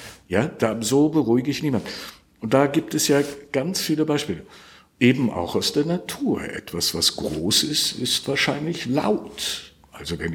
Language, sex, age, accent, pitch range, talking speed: German, male, 60-79, German, 90-135 Hz, 160 wpm